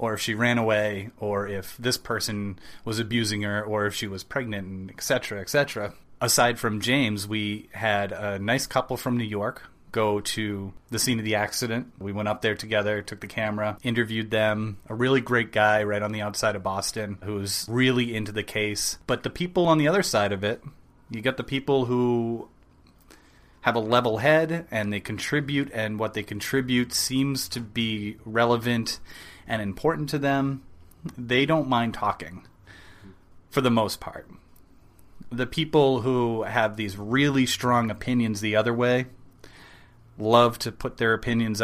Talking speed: 175 wpm